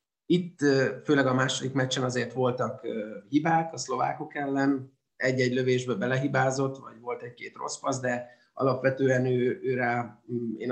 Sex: male